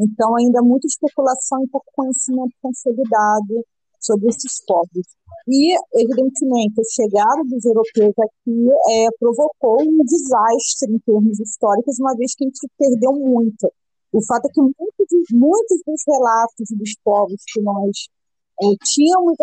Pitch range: 215-285 Hz